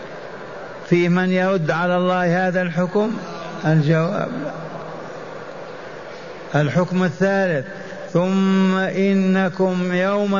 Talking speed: 75 wpm